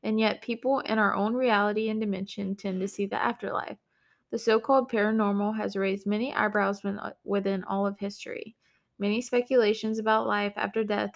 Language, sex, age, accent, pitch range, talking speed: English, female, 20-39, American, 200-230 Hz, 165 wpm